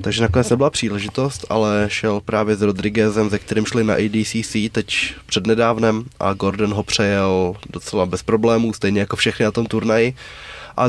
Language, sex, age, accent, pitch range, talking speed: Czech, male, 20-39, native, 105-120 Hz, 165 wpm